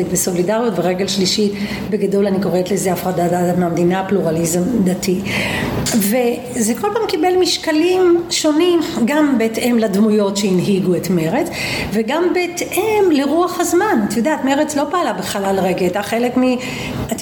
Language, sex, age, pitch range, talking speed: Hebrew, female, 40-59, 205-290 Hz, 130 wpm